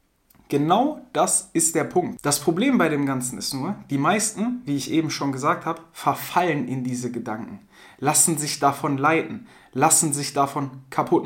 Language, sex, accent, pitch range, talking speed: German, male, German, 145-205 Hz, 170 wpm